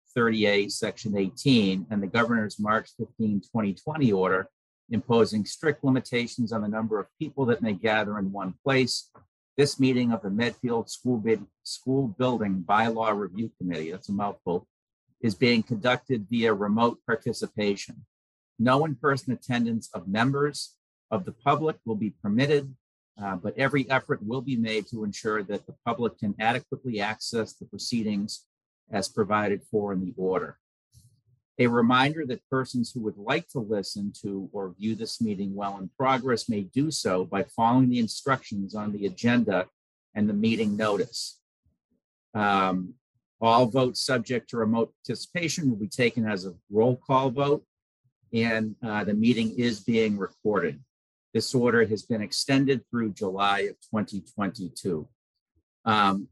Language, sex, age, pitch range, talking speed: English, male, 50-69, 105-130 Hz, 150 wpm